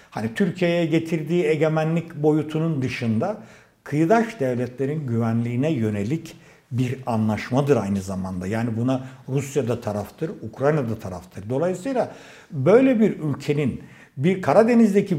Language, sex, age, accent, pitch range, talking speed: Turkish, male, 60-79, native, 135-205 Hz, 110 wpm